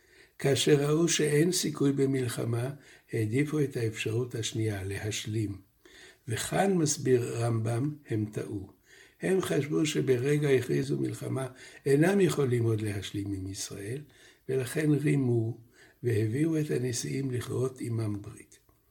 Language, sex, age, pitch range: Hebrew, male, 60-79, 110-140 Hz